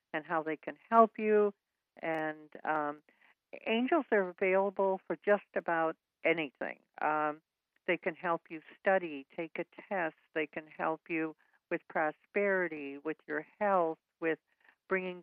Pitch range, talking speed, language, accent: 155-195 Hz, 140 wpm, English, American